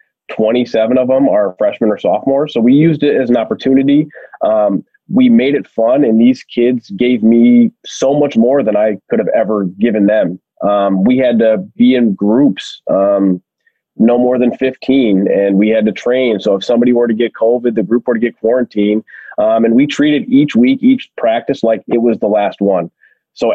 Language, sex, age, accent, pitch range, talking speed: English, male, 20-39, American, 105-135 Hz, 200 wpm